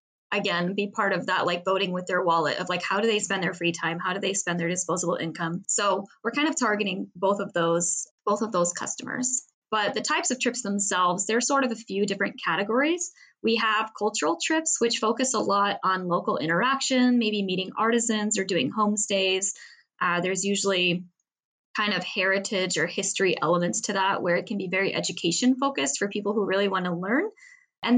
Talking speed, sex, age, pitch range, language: 200 wpm, female, 20-39, 185-230 Hz, English